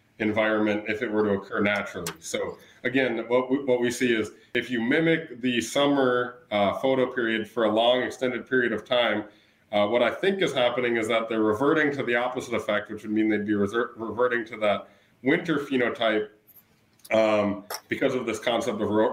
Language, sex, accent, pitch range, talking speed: English, male, American, 105-125 Hz, 195 wpm